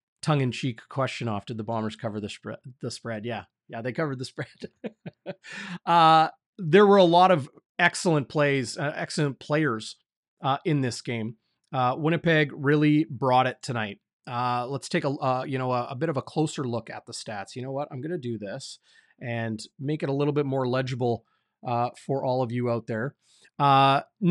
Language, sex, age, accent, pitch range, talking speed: English, male, 30-49, American, 130-175 Hz, 195 wpm